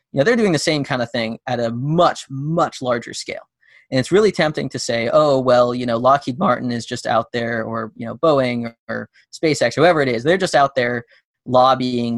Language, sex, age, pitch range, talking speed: English, male, 20-39, 120-150 Hz, 215 wpm